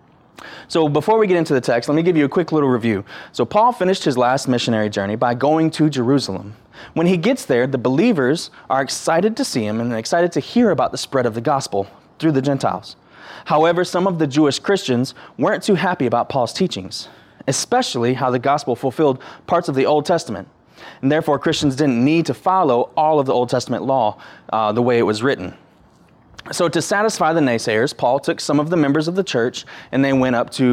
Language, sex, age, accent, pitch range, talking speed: English, male, 20-39, American, 120-165 Hz, 215 wpm